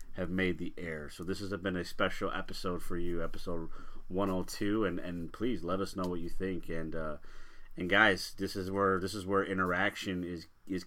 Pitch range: 80-95 Hz